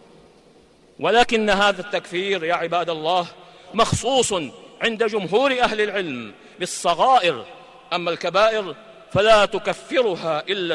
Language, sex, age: Arabic, male, 50-69